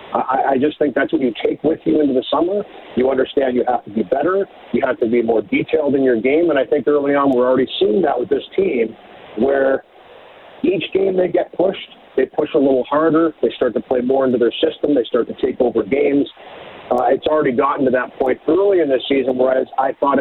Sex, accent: male, American